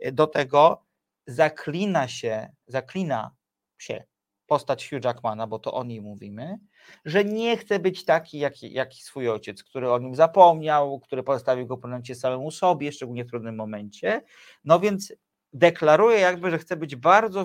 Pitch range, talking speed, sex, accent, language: 125-165 Hz, 160 wpm, male, native, Polish